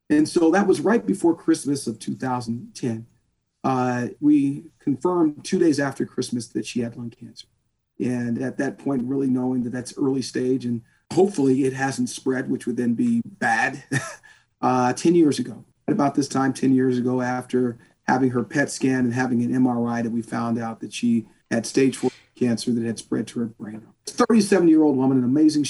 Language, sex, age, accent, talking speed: English, male, 40-59, American, 195 wpm